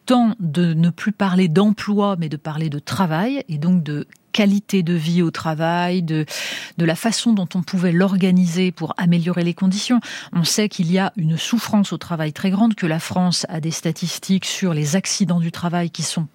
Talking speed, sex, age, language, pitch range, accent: 200 wpm, female, 30-49, French, 175-230 Hz, French